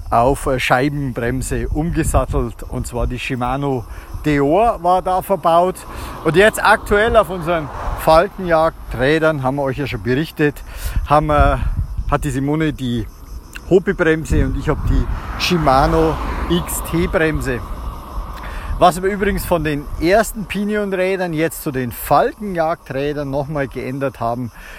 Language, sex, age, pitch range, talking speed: German, male, 50-69, 125-160 Hz, 120 wpm